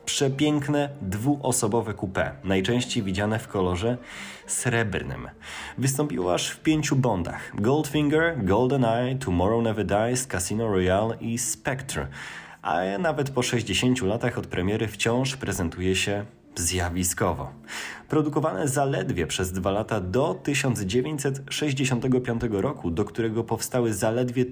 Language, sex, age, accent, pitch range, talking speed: Polish, male, 20-39, native, 100-135 Hz, 110 wpm